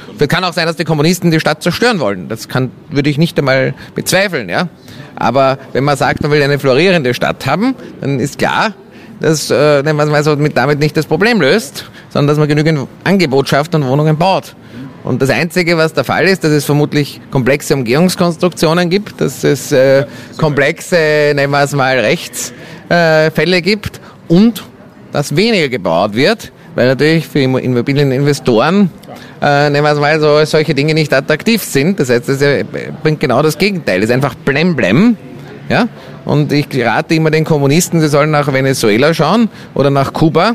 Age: 30-49